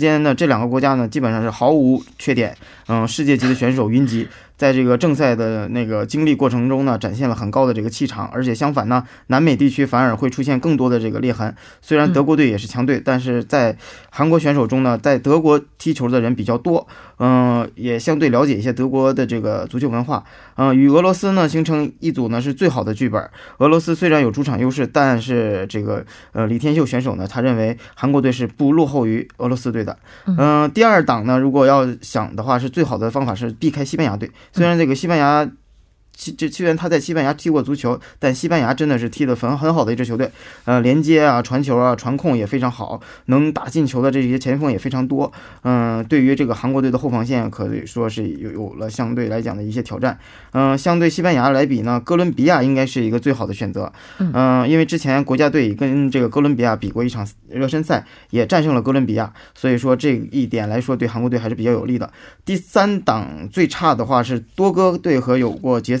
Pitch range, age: 120-145 Hz, 20-39